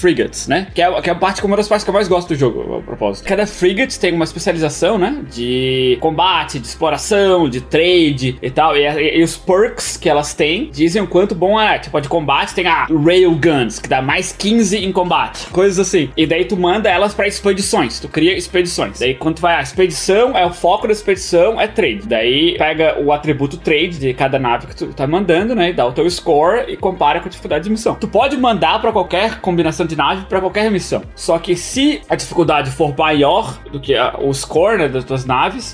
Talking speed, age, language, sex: 230 wpm, 20-39, Portuguese, male